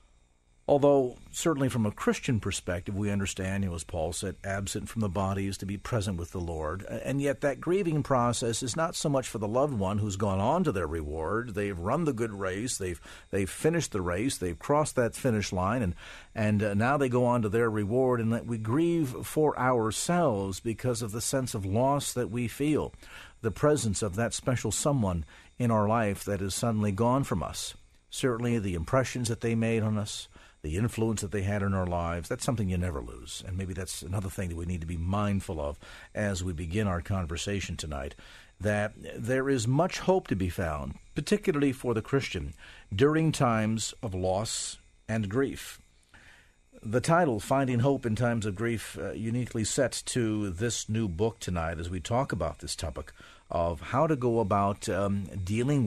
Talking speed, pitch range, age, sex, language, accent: 195 wpm, 95-125 Hz, 50-69, male, English, American